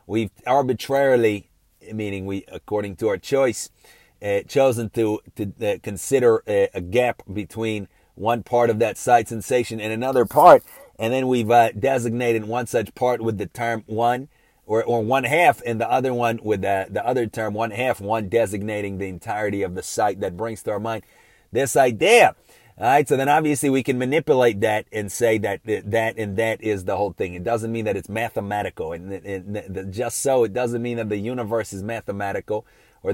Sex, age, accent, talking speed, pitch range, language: male, 30-49, American, 190 wpm, 105-125 Hz, English